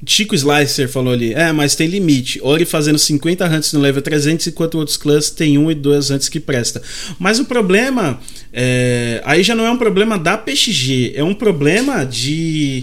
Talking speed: 195 wpm